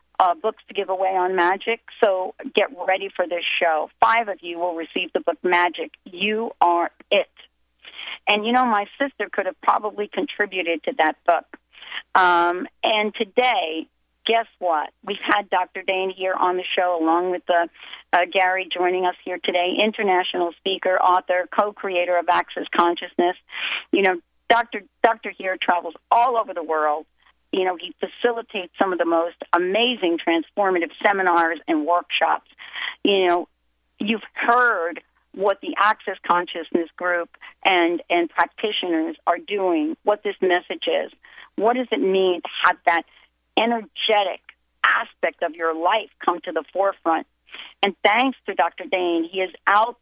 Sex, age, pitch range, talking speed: female, 40-59, 175-215 Hz, 155 wpm